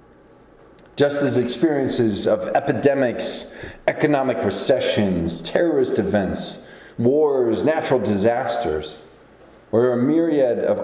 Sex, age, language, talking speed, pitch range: male, 40-59, English, 90 wpm, 115-175 Hz